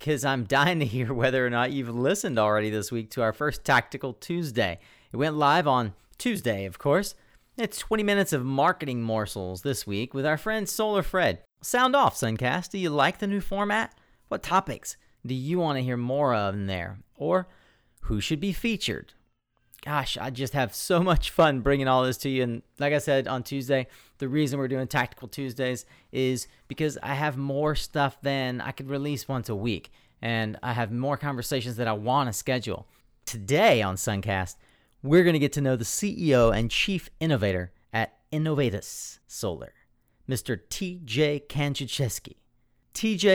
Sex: male